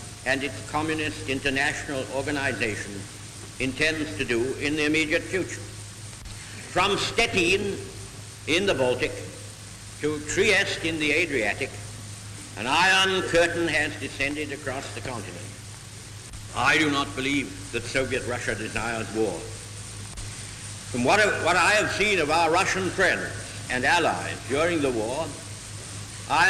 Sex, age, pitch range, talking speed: male, 70-89, 105-150 Hz, 120 wpm